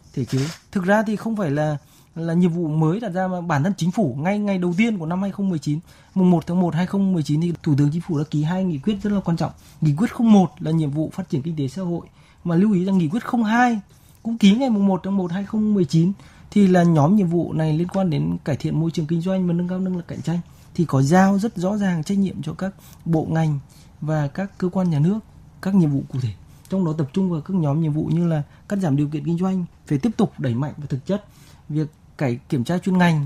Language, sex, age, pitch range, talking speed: Vietnamese, male, 20-39, 150-190 Hz, 265 wpm